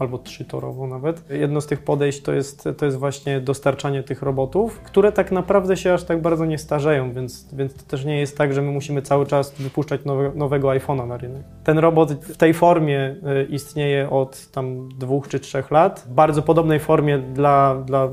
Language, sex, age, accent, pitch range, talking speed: Polish, male, 20-39, native, 135-160 Hz, 195 wpm